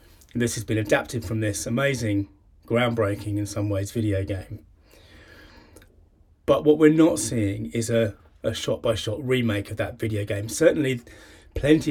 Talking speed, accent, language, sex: 145 wpm, British, English, male